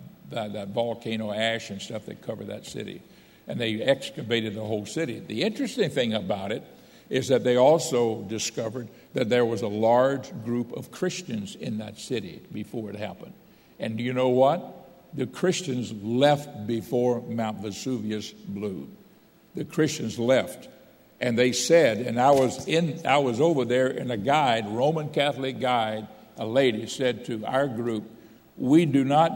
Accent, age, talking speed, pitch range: American, 60-79, 165 wpm, 115-140 Hz